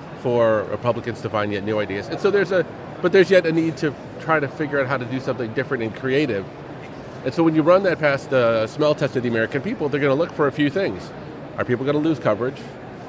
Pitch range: 115-145 Hz